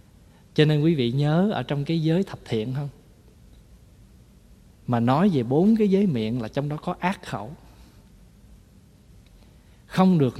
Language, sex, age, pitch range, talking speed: Vietnamese, male, 20-39, 115-160 Hz, 155 wpm